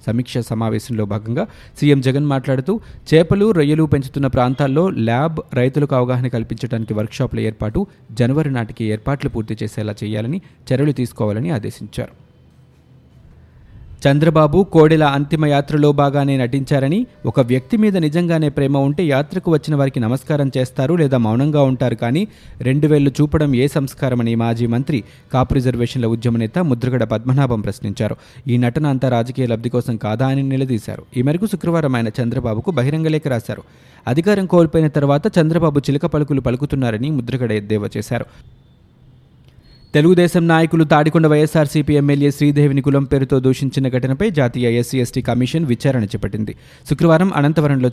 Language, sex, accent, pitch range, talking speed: Telugu, male, native, 120-150 Hz, 125 wpm